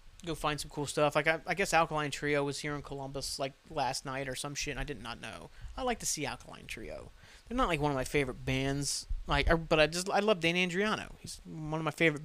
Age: 30-49